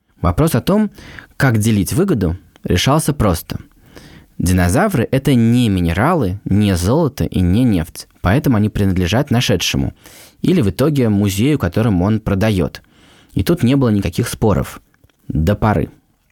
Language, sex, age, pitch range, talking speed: Russian, male, 20-39, 95-125 Hz, 130 wpm